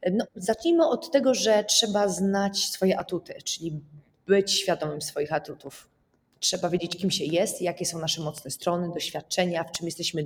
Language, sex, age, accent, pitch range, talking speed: Polish, female, 30-49, native, 170-210 Hz, 165 wpm